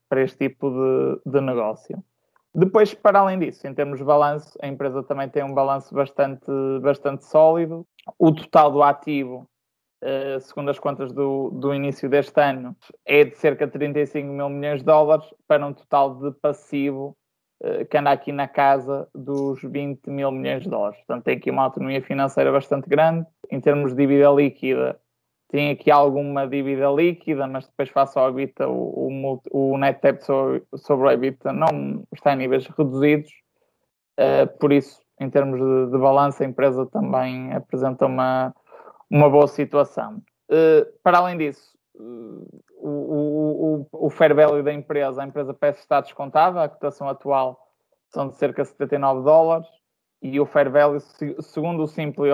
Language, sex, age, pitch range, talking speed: Portuguese, male, 20-39, 135-150 Hz, 160 wpm